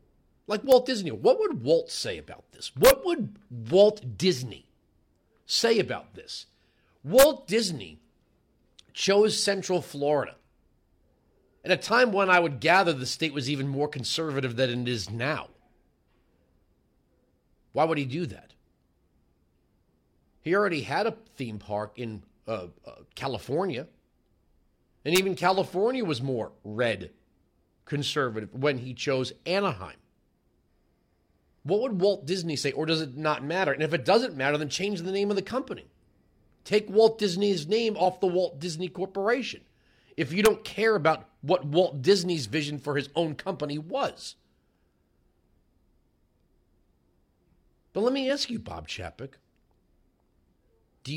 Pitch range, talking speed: 115-185 Hz, 135 wpm